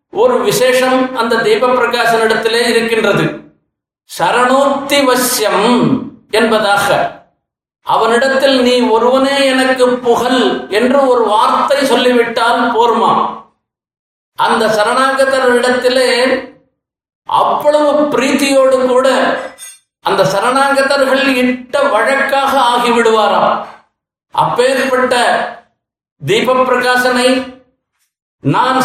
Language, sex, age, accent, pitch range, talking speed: Tamil, male, 50-69, native, 230-260 Hz, 70 wpm